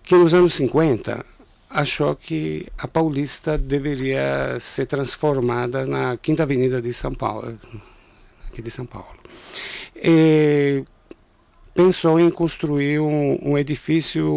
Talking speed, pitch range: 115 wpm, 115-140 Hz